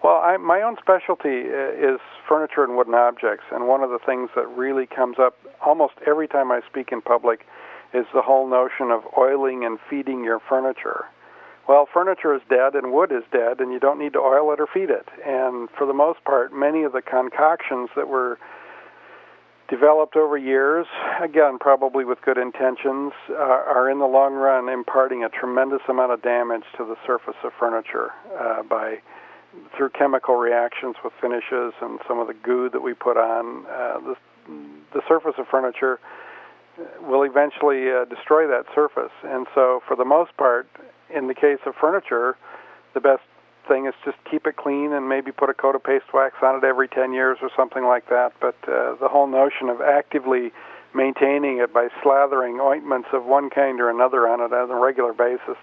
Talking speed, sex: 190 wpm, male